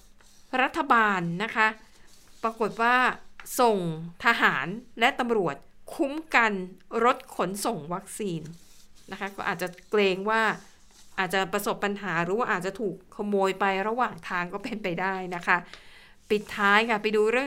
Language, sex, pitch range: Thai, female, 200-250 Hz